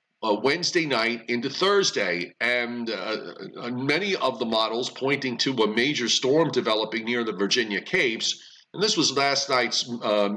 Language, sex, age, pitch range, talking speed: English, male, 40-59, 105-130 Hz, 155 wpm